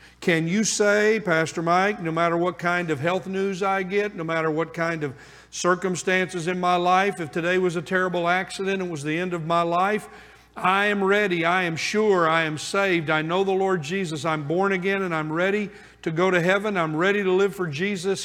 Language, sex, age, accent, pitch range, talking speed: English, male, 50-69, American, 165-195 Hz, 215 wpm